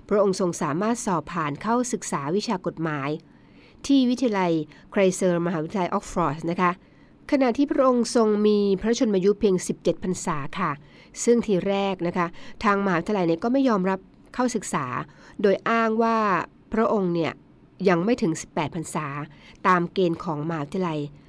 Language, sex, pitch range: Thai, female, 170-215 Hz